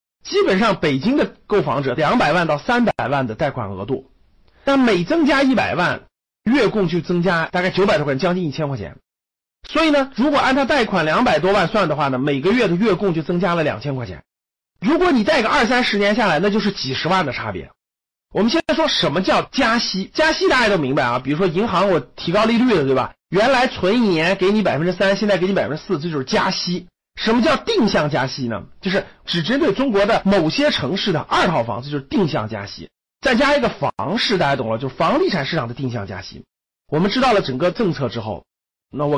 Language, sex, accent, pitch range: Chinese, male, native, 135-225 Hz